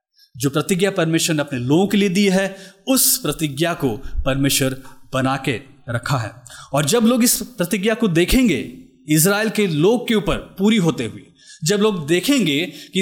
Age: 30-49